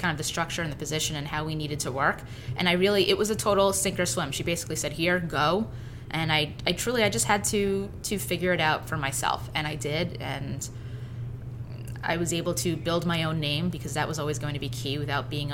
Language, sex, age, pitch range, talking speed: English, female, 20-39, 125-165 Hz, 245 wpm